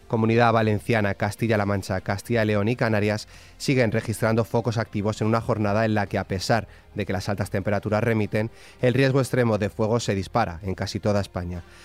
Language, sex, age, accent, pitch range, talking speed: Spanish, male, 30-49, Spanish, 100-115 Hz, 195 wpm